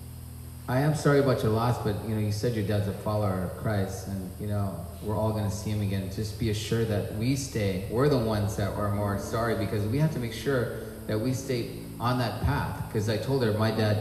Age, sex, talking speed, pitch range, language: 30-49, male, 245 wpm, 105-130 Hz, English